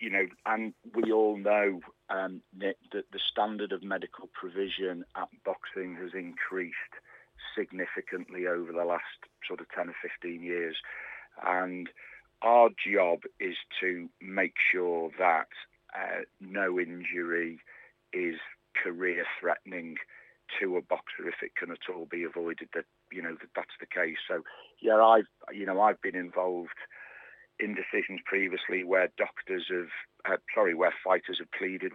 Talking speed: 145 wpm